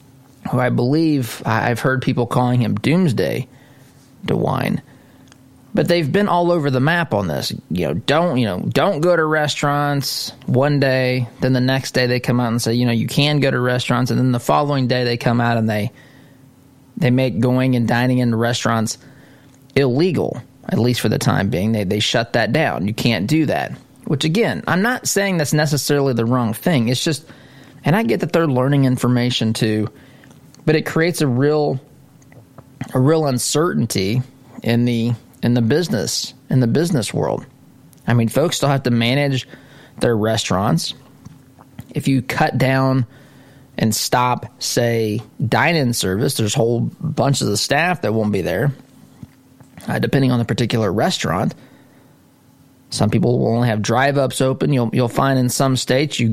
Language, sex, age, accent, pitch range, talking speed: English, male, 20-39, American, 120-140 Hz, 175 wpm